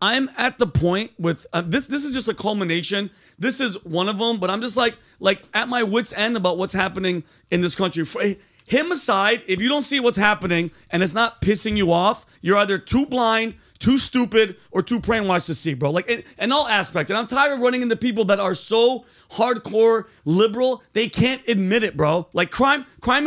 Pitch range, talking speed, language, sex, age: 195-250 Hz, 215 wpm, English, male, 30-49